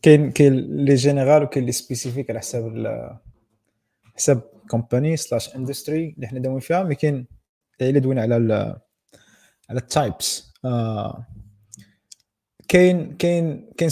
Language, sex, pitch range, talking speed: Arabic, male, 120-155 Hz, 110 wpm